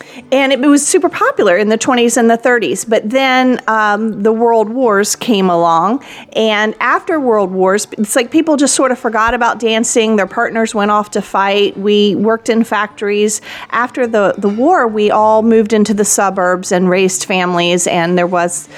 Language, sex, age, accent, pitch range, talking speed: English, female, 40-59, American, 205-250 Hz, 185 wpm